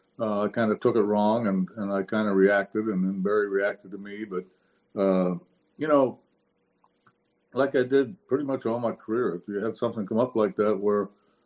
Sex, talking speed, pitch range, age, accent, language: male, 210 wpm, 100-115 Hz, 60-79, American, English